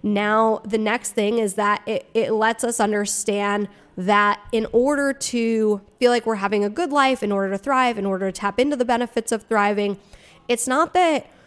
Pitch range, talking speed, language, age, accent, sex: 205-245 Hz, 200 wpm, English, 20-39, American, female